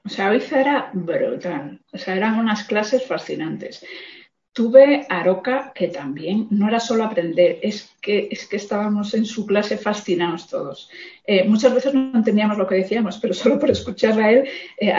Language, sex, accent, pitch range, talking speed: Spanish, female, Spanish, 180-210 Hz, 180 wpm